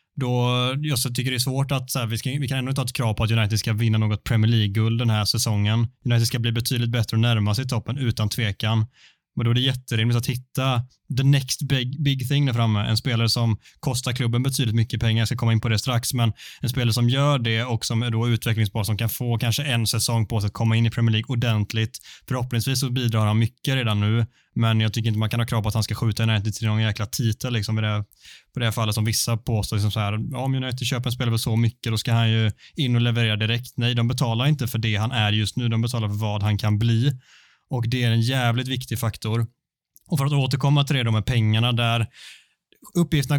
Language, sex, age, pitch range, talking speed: Swedish, male, 20-39, 115-130 Hz, 250 wpm